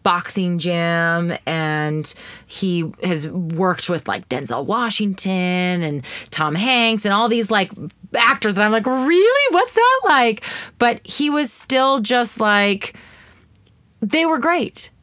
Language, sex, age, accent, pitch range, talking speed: English, female, 30-49, American, 175-235 Hz, 135 wpm